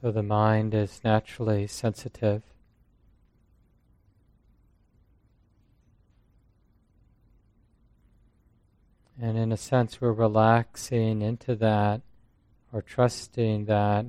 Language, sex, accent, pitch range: English, male, American, 105-115 Hz